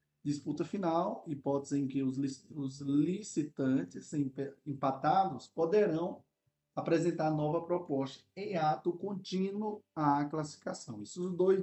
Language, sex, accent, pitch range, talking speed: Portuguese, male, Brazilian, 135-175 Hz, 100 wpm